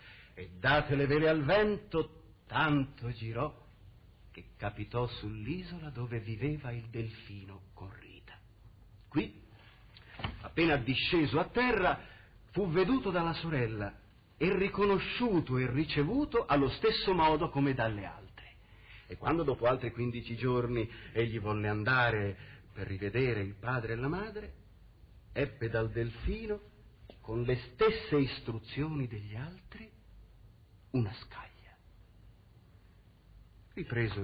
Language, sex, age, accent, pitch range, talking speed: Italian, male, 50-69, native, 105-130 Hz, 110 wpm